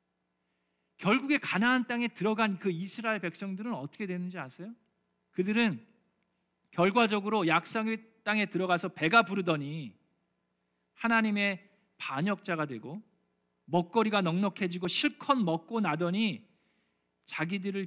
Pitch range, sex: 145-210 Hz, male